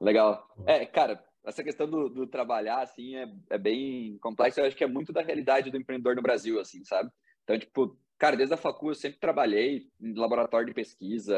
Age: 20-39